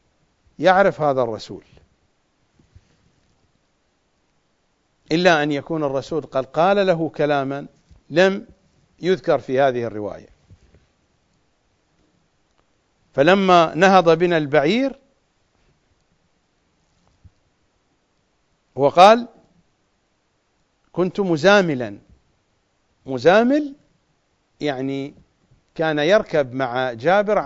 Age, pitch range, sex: 50-69, 130-185 Hz, male